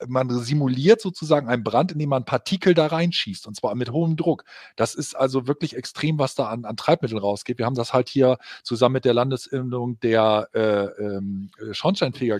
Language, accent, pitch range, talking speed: German, German, 120-155 Hz, 190 wpm